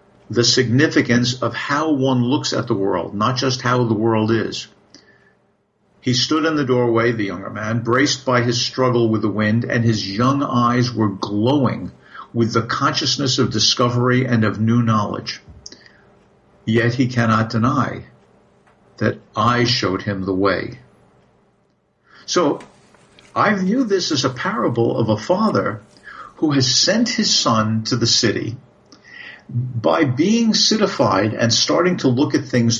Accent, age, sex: American, 50-69, male